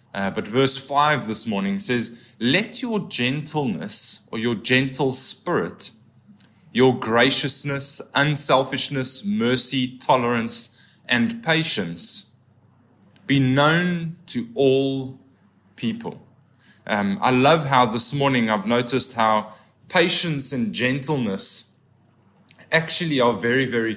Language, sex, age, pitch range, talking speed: English, male, 20-39, 115-150 Hz, 105 wpm